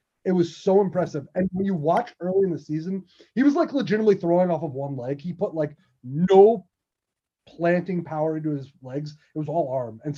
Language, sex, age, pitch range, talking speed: English, male, 30-49, 145-185 Hz, 205 wpm